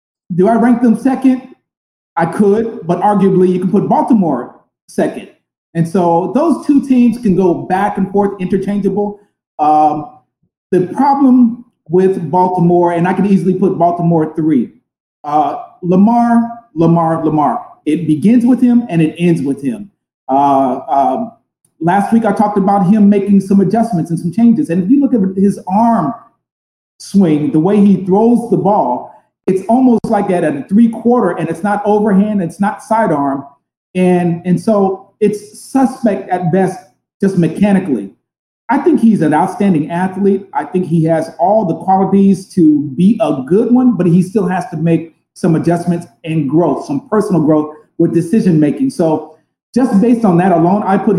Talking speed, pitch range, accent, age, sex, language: 165 wpm, 170-215 Hz, American, 40-59, male, English